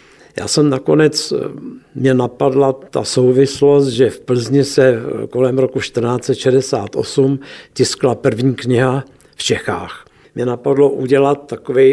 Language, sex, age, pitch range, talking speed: Czech, male, 60-79, 120-135 Hz, 115 wpm